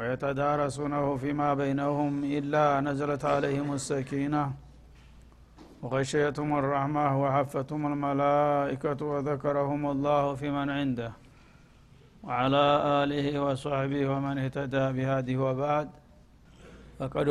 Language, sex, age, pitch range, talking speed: Amharic, male, 60-79, 140-145 Hz, 85 wpm